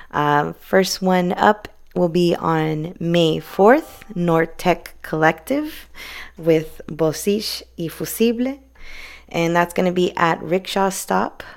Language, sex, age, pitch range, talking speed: English, female, 20-39, 165-215 Hz, 125 wpm